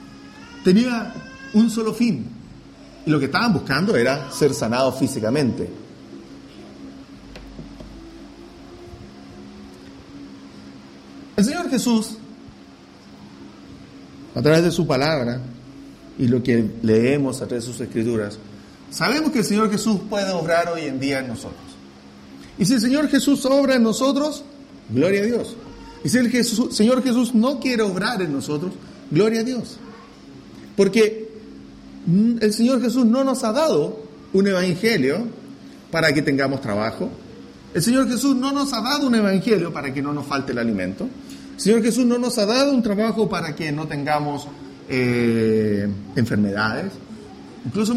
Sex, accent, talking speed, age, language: male, Venezuelan, 140 wpm, 40-59, English